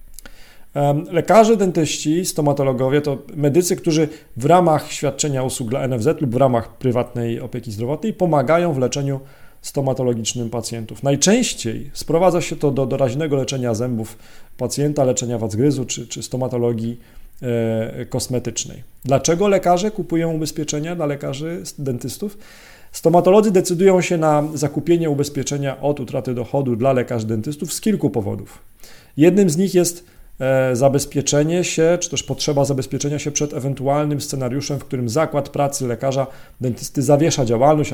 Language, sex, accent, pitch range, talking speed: Polish, male, native, 125-155 Hz, 130 wpm